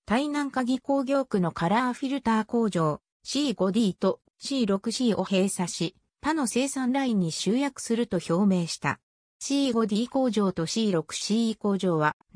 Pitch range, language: 180-265 Hz, Japanese